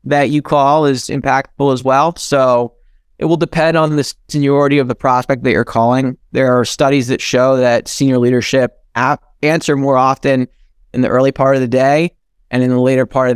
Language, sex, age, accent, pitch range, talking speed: English, male, 20-39, American, 130-150 Hz, 200 wpm